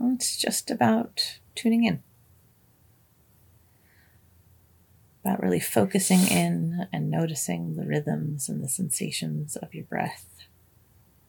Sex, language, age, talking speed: female, English, 30-49, 100 wpm